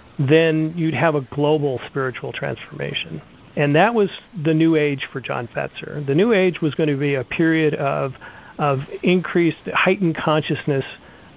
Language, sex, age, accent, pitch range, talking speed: English, male, 40-59, American, 135-160 Hz, 160 wpm